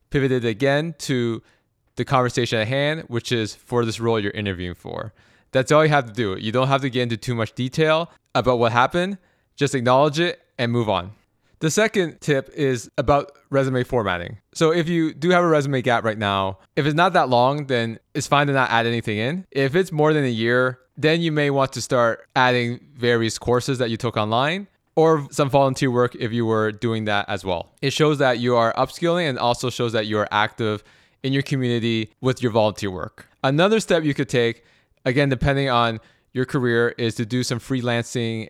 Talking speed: 210 wpm